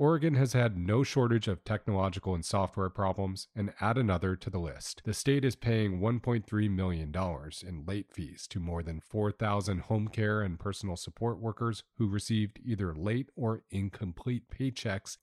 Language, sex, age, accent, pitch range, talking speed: English, male, 40-59, American, 95-110 Hz, 165 wpm